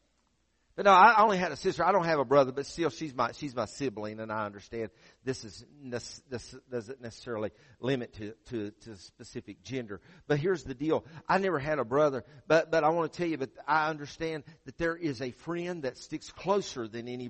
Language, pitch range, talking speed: English, 155-260 Hz, 215 wpm